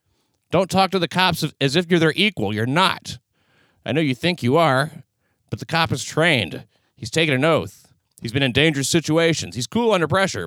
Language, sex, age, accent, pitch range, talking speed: English, male, 40-59, American, 105-150 Hz, 205 wpm